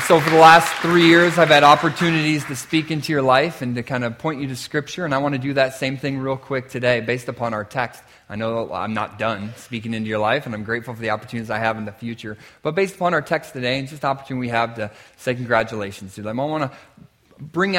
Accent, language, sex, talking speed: American, English, male, 265 wpm